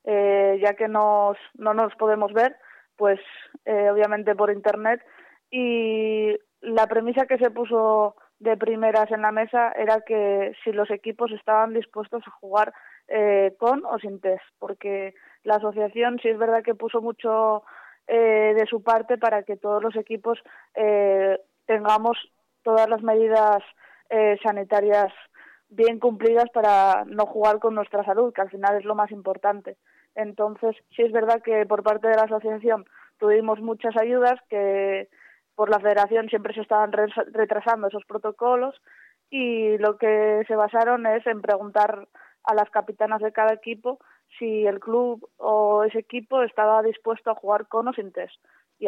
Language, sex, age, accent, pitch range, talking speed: Spanish, female, 20-39, Spanish, 210-225 Hz, 160 wpm